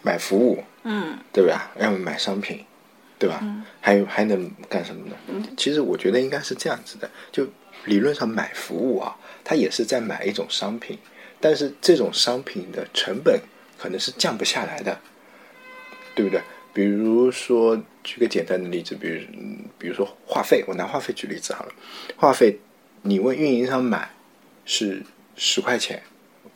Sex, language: male, Chinese